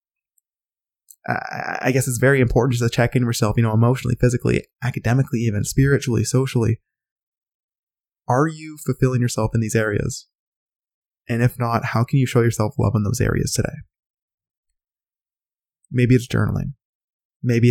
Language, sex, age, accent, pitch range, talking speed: English, male, 20-39, American, 110-130 Hz, 140 wpm